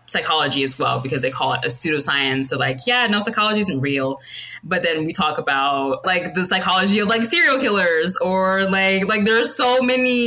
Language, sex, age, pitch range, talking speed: English, female, 20-39, 140-215 Hz, 205 wpm